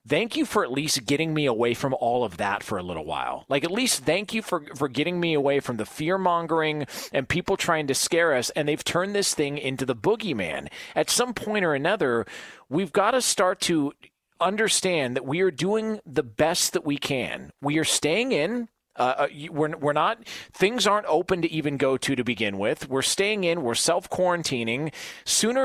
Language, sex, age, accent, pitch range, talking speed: English, male, 40-59, American, 150-215 Hz, 210 wpm